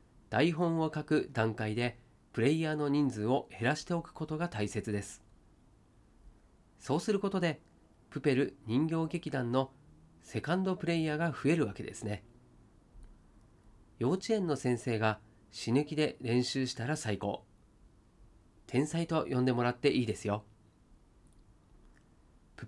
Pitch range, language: 110-160 Hz, Japanese